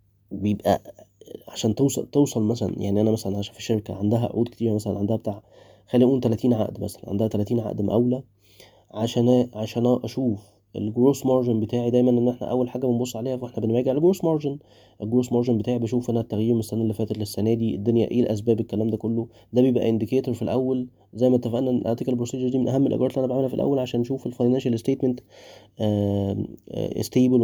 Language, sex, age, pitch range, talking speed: Arabic, male, 20-39, 105-125 Hz, 190 wpm